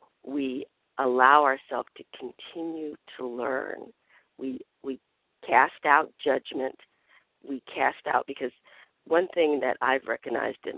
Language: English